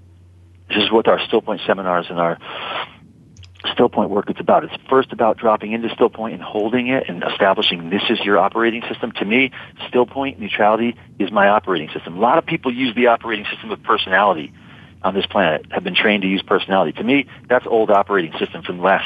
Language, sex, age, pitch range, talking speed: English, male, 40-59, 95-125 Hz, 210 wpm